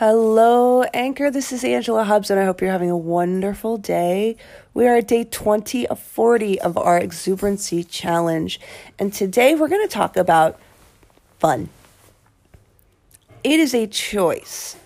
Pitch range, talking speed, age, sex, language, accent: 160-210 Hz, 150 wpm, 40-59, female, English, American